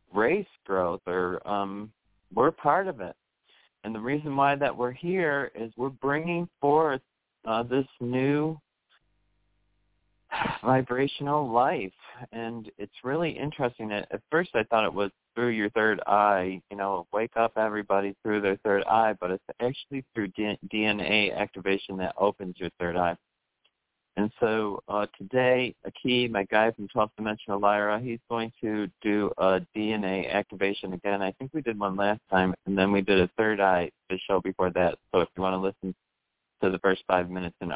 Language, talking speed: English, 170 wpm